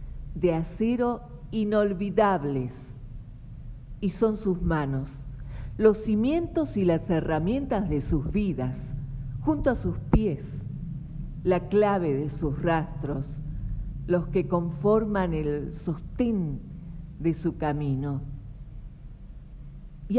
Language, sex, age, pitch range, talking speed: Spanish, female, 50-69, 140-190 Hz, 100 wpm